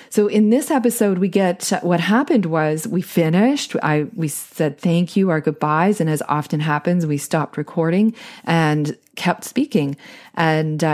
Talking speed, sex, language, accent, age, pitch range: 160 wpm, female, English, American, 30-49, 155-205 Hz